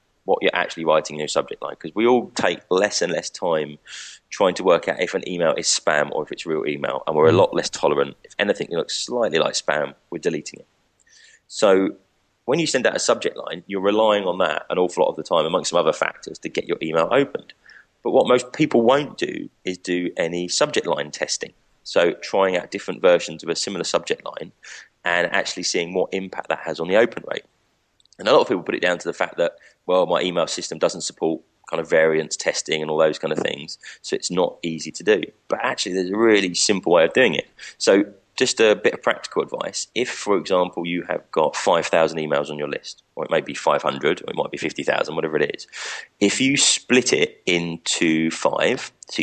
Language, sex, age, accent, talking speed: English, male, 20-39, British, 230 wpm